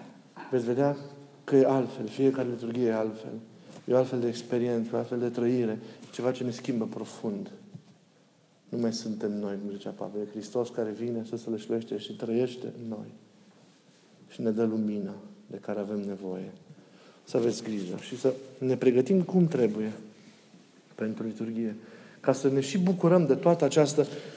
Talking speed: 165 wpm